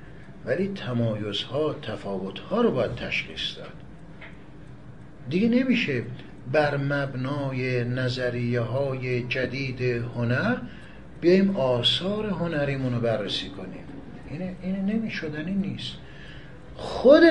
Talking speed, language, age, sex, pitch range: 90 wpm, Persian, 60-79, male, 120-175 Hz